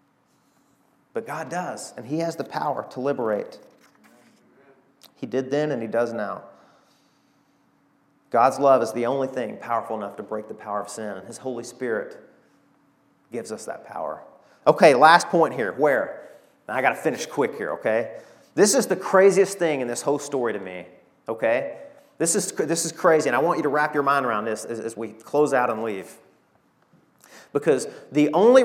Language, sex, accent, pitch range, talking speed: English, male, American, 140-200 Hz, 185 wpm